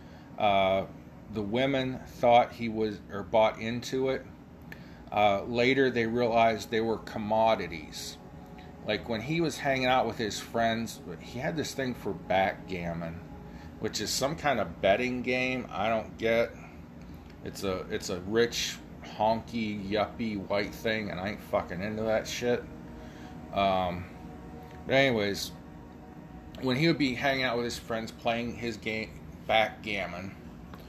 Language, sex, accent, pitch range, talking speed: English, male, American, 90-120 Hz, 145 wpm